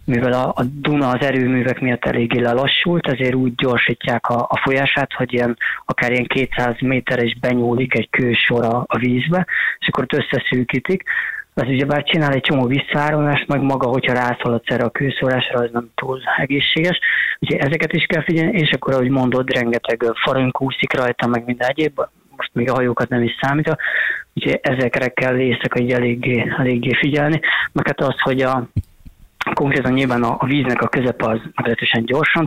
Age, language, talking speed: 20-39, Hungarian, 170 wpm